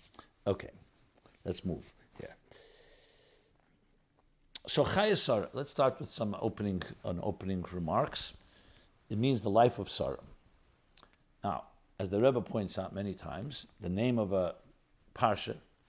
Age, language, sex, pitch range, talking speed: 60-79, English, male, 100-145 Hz, 130 wpm